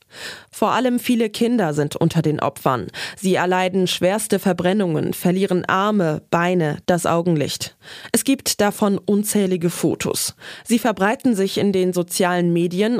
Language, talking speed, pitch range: German, 135 wpm, 170-210 Hz